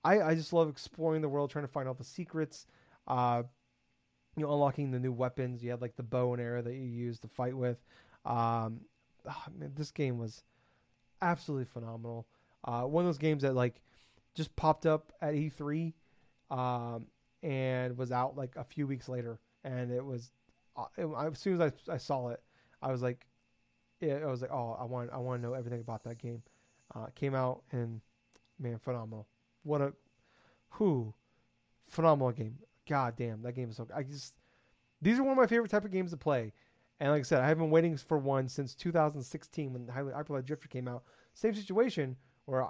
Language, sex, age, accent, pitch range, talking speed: English, male, 30-49, American, 120-145 Hz, 200 wpm